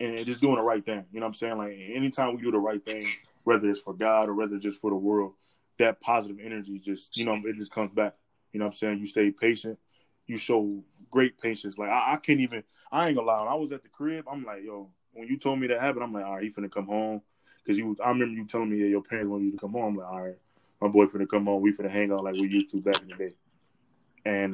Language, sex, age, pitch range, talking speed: English, male, 20-39, 100-115 Hz, 290 wpm